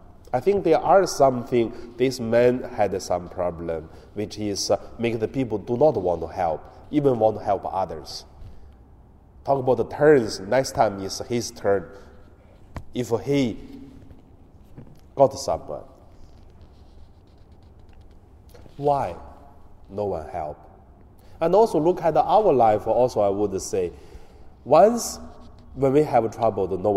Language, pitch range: Chinese, 90-120 Hz